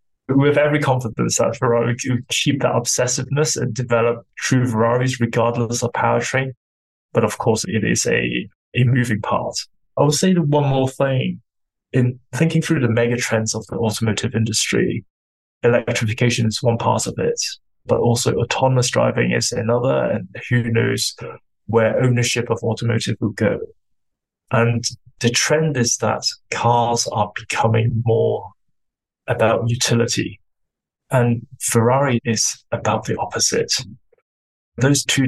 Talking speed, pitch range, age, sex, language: 140 wpm, 115-125 Hz, 20-39, male, English